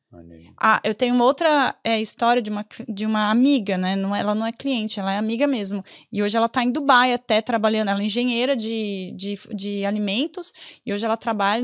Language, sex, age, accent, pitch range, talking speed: Portuguese, female, 10-29, Brazilian, 225-275 Hz, 190 wpm